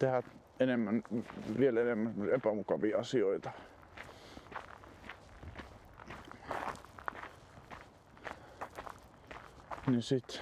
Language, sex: Finnish, male